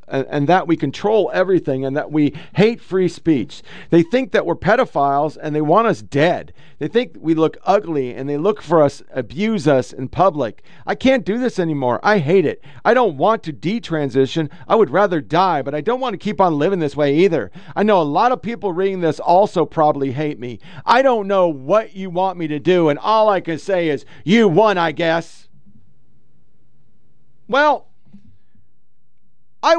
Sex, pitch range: male, 150-210 Hz